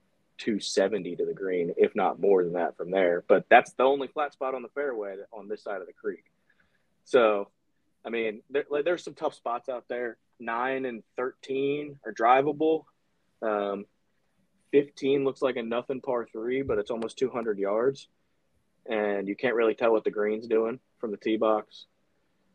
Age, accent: 20-39, American